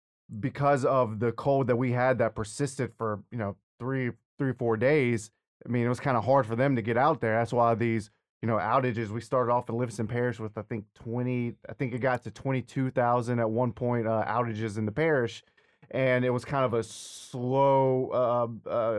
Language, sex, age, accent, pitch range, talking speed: English, male, 20-39, American, 115-135 Hz, 215 wpm